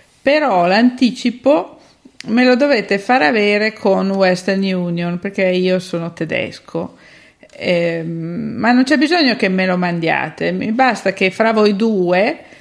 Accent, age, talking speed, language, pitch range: native, 50-69, 140 wpm, Italian, 180-245 Hz